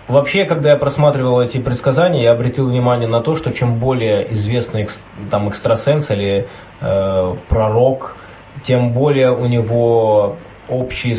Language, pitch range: Russian, 110-130 Hz